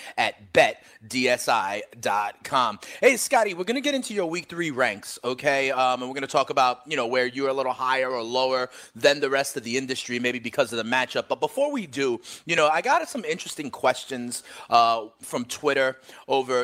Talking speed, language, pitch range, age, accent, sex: 200 wpm, English, 125-170 Hz, 30-49, American, male